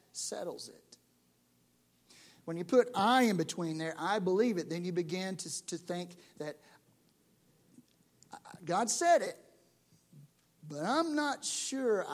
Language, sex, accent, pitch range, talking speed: English, male, American, 150-210 Hz, 130 wpm